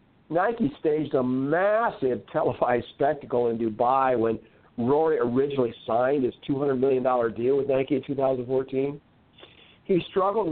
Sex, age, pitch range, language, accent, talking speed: male, 50-69, 130-170 Hz, English, American, 125 wpm